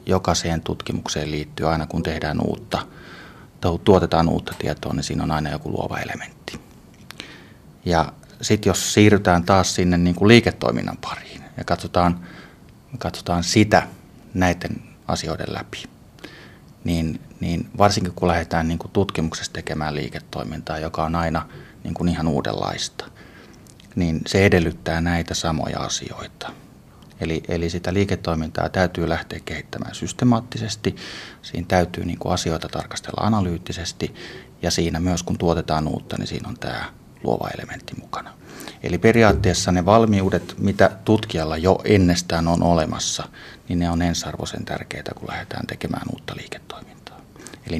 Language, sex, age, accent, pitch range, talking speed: Finnish, male, 30-49, native, 85-100 Hz, 130 wpm